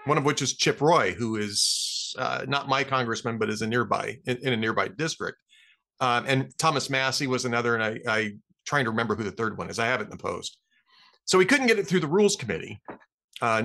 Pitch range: 125-195 Hz